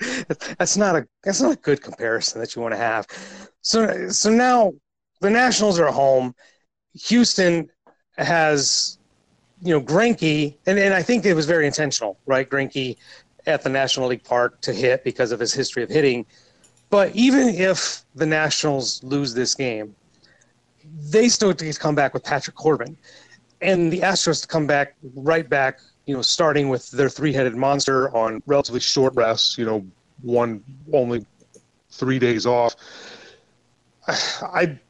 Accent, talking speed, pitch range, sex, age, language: American, 160 wpm, 130-175 Hz, male, 30-49, English